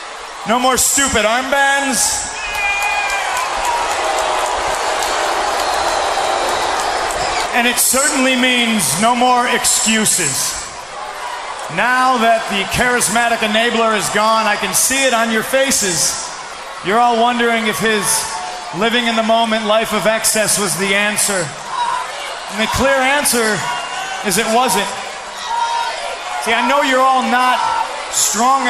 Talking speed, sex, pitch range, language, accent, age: 105 wpm, male, 220-255 Hz, English, American, 30-49